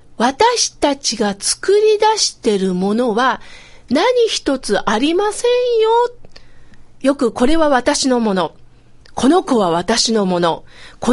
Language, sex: Japanese, female